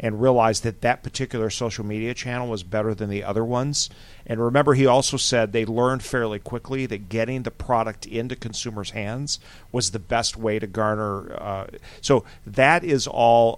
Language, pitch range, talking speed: English, 100-125 Hz, 180 wpm